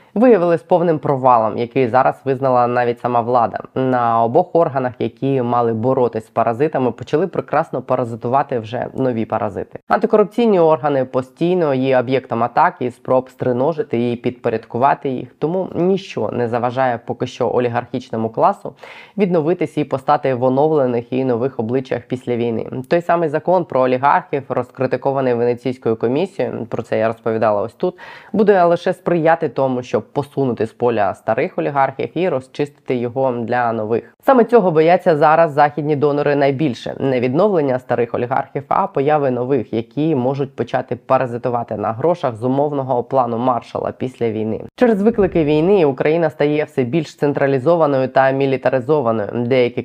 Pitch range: 120-150 Hz